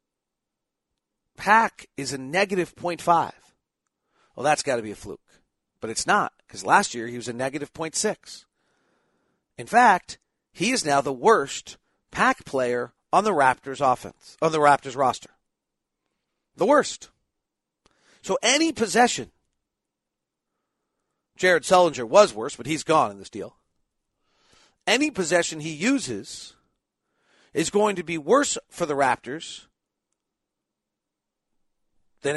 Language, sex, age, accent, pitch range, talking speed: English, male, 40-59, American, 140-210 Hz, 130 wpm